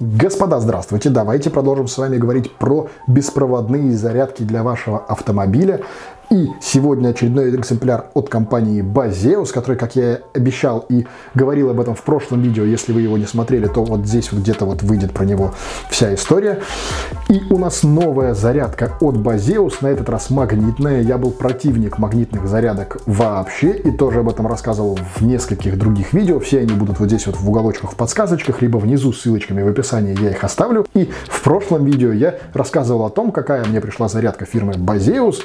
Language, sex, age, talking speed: Russian, male, 20-39, 180 wpm